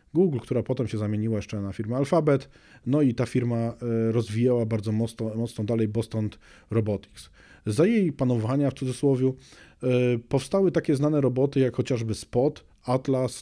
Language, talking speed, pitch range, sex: Polish, 150 wpm, 115-135 Hz, male